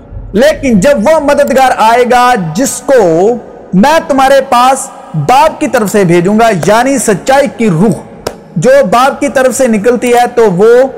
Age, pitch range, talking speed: 50-69, 210-285 Hz, 165 wpm